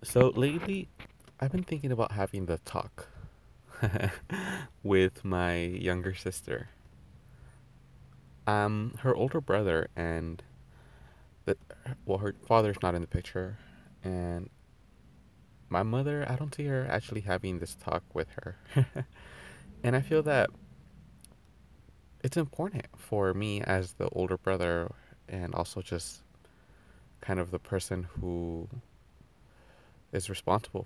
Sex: male